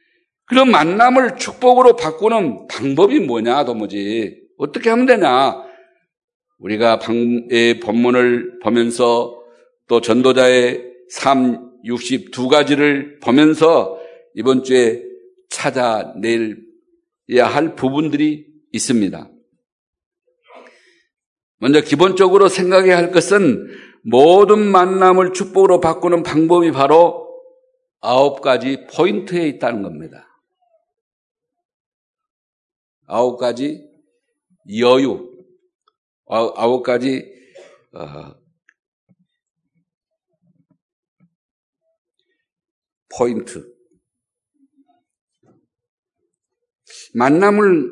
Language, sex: Korean, male